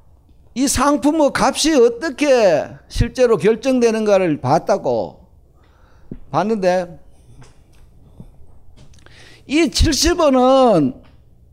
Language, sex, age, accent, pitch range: Korean, male, 50-69, native, 175-265 Hz